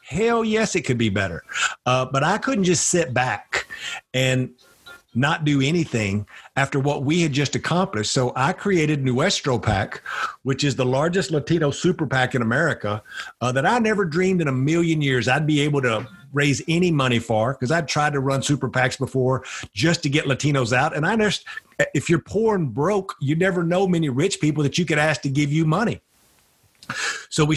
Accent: American